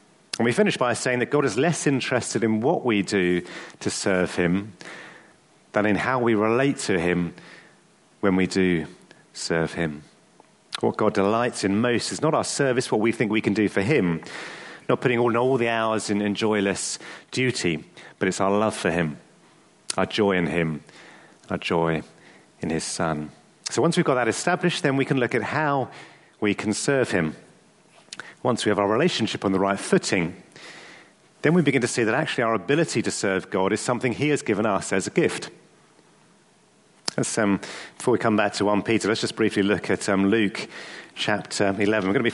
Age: 40-59